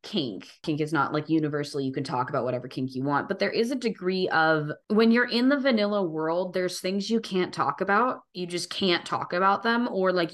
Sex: female